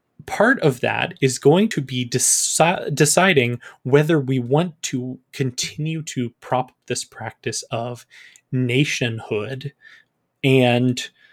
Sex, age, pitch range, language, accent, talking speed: male, 20-39, 120-145 Hz, English, American, 105 wpm